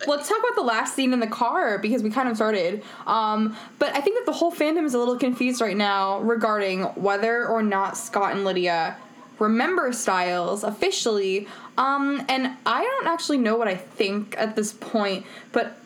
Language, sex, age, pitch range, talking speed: English, female, 10-29, 215-270 Hz, 195 wpm